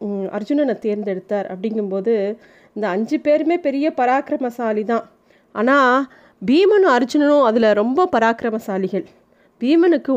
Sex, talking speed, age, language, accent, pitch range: female, 95 wpm, 30-49, Tamil, native, 215-270 Hz